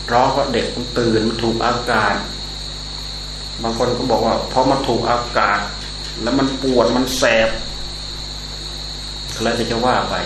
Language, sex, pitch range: Thai, male, 110-130 Hz